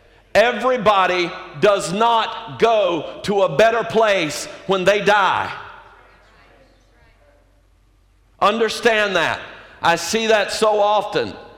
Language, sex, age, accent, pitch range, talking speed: English, male, 50-69, American, 175-200 Hz, 95 wpm